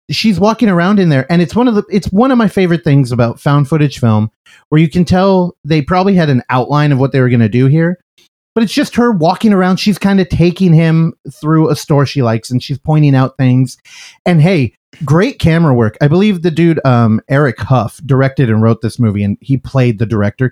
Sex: male